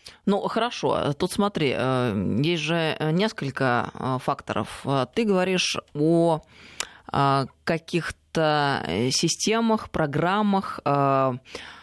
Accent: native